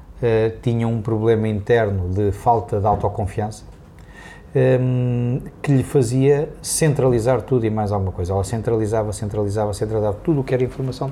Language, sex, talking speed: Portuguese, male, 145 wpm